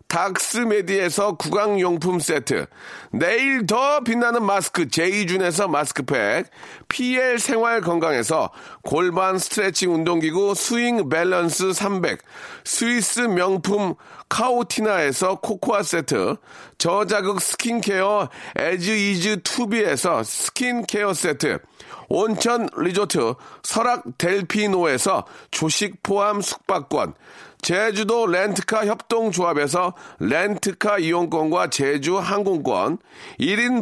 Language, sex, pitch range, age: Korean, male, 180-235 Hz, 40-59